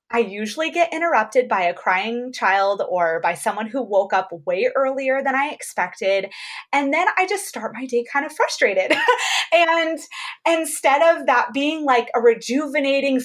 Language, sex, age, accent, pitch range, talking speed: English, female, 20-39, American, 205-330 Hz, 170 wpm